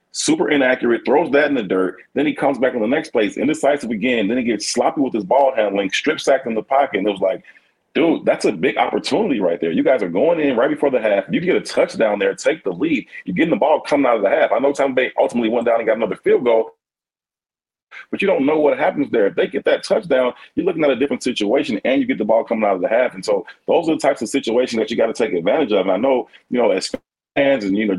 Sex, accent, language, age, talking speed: male, American, English, 40-59, 285 wpm